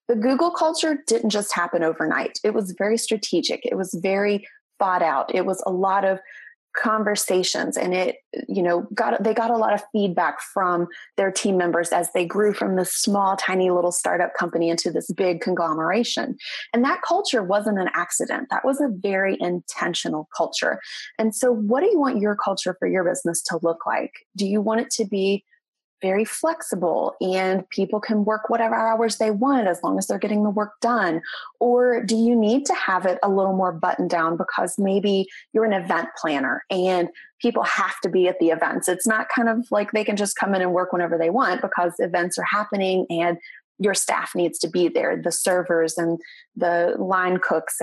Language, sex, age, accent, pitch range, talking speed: English, female, 20-39, American, 175-220 Hz, 200 wpm